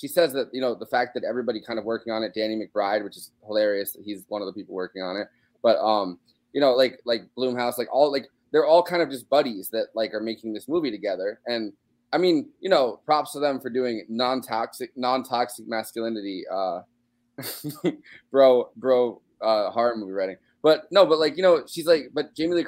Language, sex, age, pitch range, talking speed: English, male, 20-39, 105-130 Hz, 215 wpm